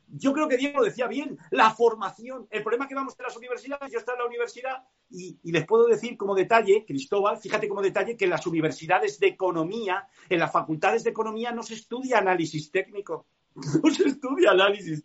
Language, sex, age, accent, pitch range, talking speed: Spanish, male, 50-69, Spanish, 165-260 Hz, 205 wpm